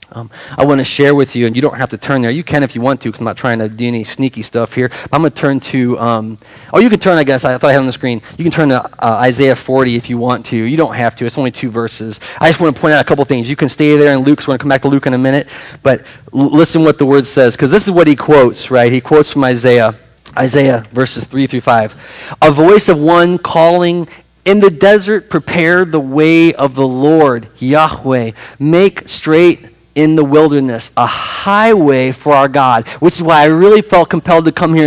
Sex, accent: male, American